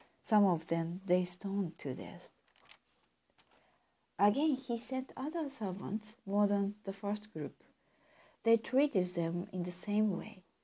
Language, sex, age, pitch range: Japanese, female, 50-69, 180-220 Hz